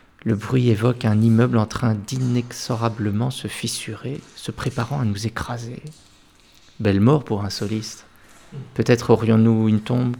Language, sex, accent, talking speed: French, male, French, 140 wpm